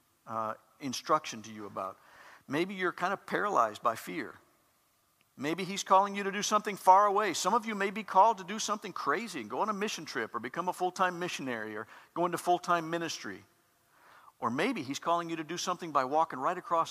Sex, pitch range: male, 130-175 Hz